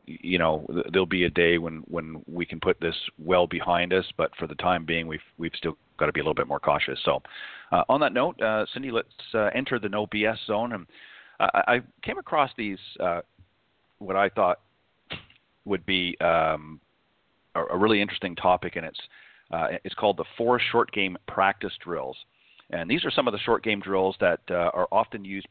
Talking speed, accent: 205 wpm, American